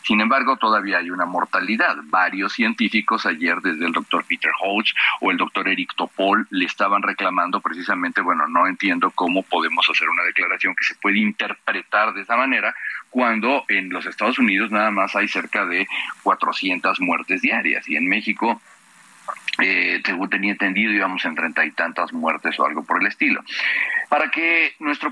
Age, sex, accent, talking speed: 40-59, male, Mexican, 170 wpm